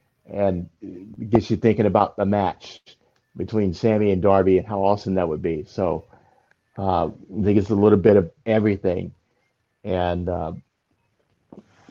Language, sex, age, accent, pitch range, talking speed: English, male, 50-69, American, 95-110 Hz, 145 wpm